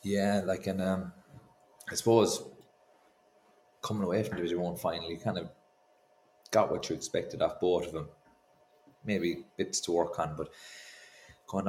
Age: 30-49